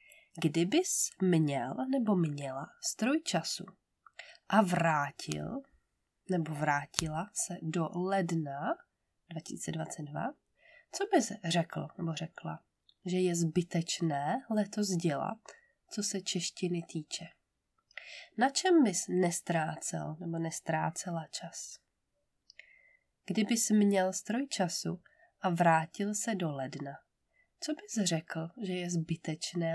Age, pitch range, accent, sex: 20-39, 165-220 Hz, native, female